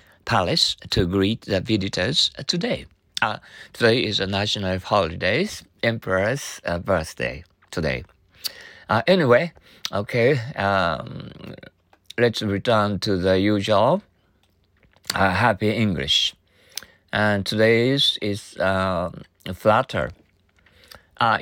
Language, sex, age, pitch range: Japanese, male, 50-69, 90-110 Hz